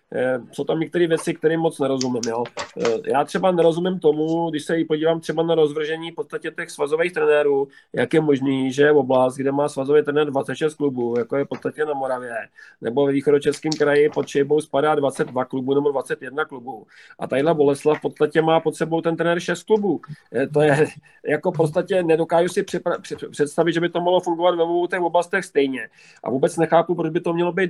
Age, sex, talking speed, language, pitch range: 40-59, male, 195 wpm, Czech, 145-170 Hz